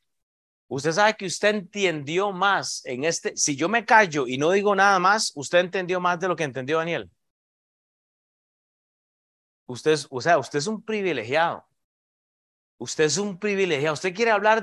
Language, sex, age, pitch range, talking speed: Spanish, male, 30-49, 140-190 Hz, 165 wpm